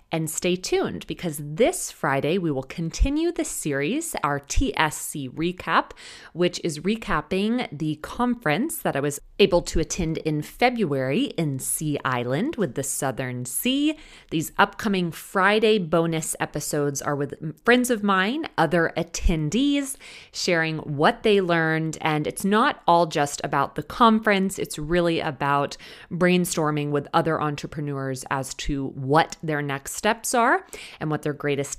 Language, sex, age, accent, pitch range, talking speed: English, female, 30-49, American, 140-190 Hz, 145 wpm